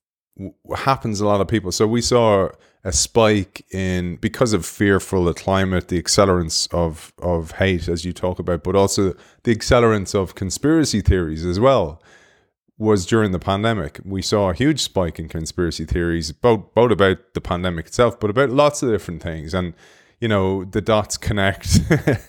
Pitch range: 90-115 Hz